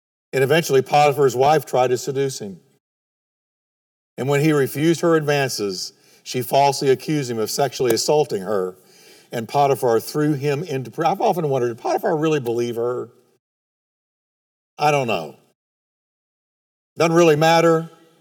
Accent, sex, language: American, male, English